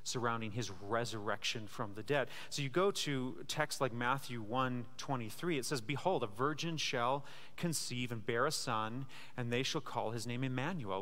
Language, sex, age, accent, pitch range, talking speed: English, male, 30-49, American, 115-145 Hz, 180 wpm